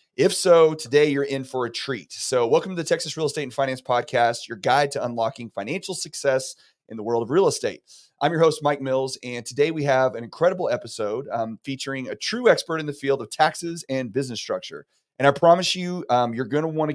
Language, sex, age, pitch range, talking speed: English, male, 30-49, 125-155 Hz, 225 wpm